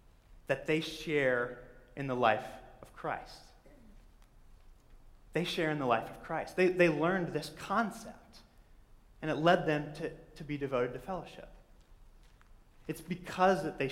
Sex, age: male, 30-49